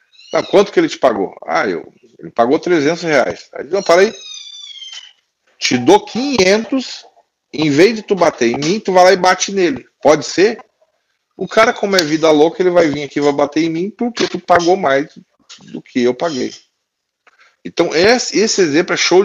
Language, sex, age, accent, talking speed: English, male, 40-59, Brazilian, 195 wpm